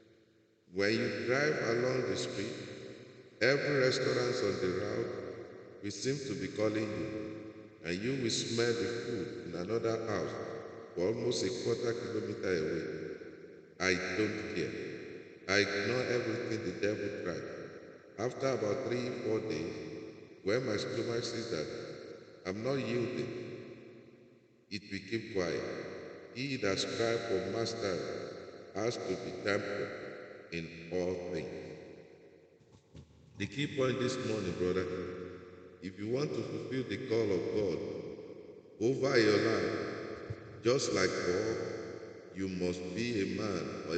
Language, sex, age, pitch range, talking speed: English, male, 50-69, 90-125 Hz, 130 wpm